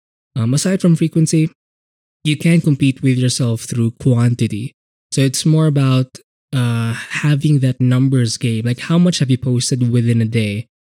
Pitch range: 120-145 Hz